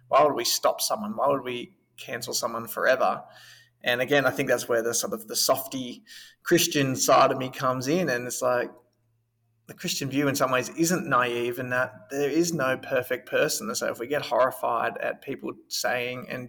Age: 20-39